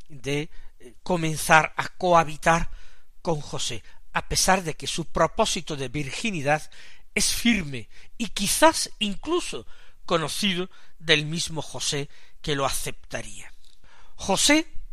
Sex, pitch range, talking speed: male, 145-205 Hz, 110 wpm